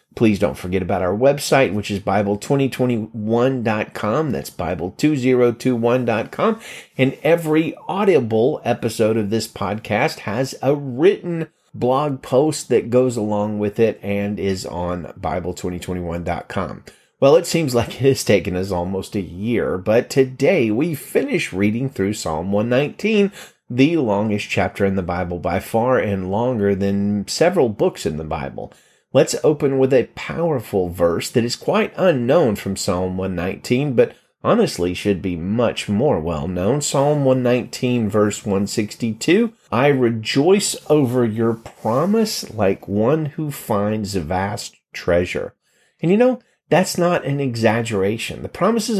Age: 30-49